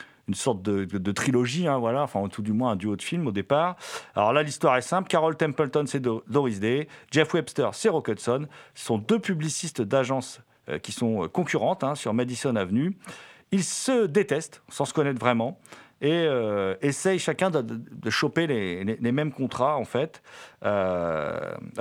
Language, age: French, 40-59